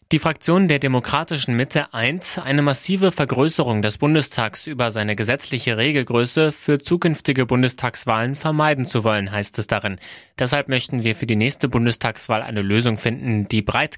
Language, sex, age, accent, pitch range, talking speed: German, male, 20-39, German, 110-135 Hz, 155 wpm